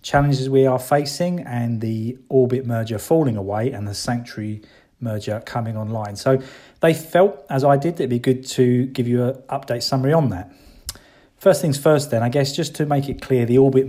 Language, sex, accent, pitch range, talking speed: English, male, British, 115-135 Hz, 200 wpm